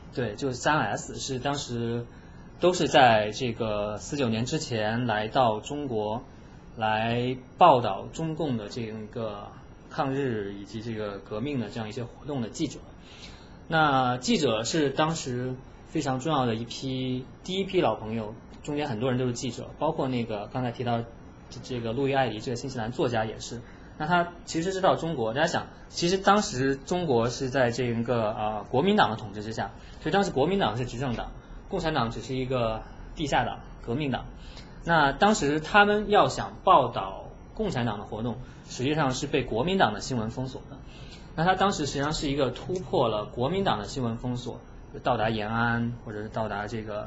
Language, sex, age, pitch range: Chinese, male, 20-39, 110-145 Hz